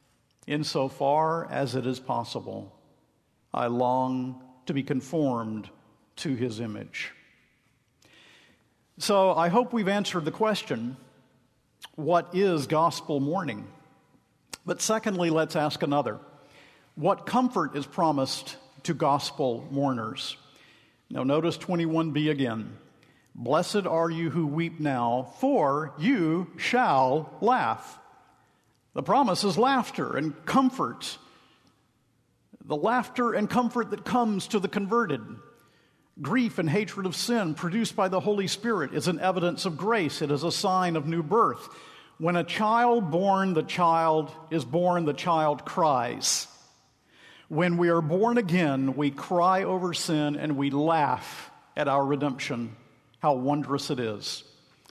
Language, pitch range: English, 140-195 Hz